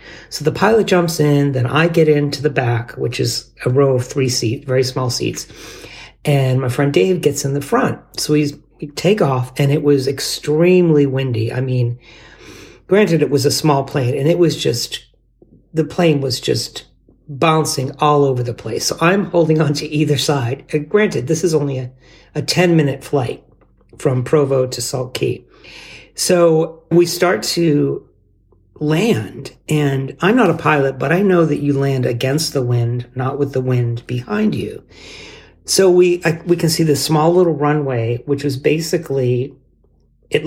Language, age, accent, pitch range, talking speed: English, 40-59, American, 130-160 Hz, 175 wpm